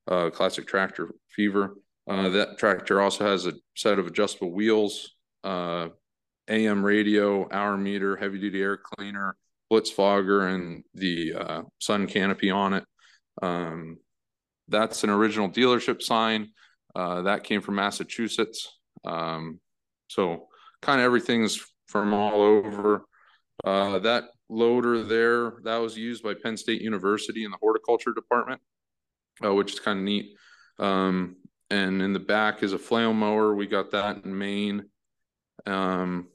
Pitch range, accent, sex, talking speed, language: 95-110 Hz, American, male, 145 wpm, English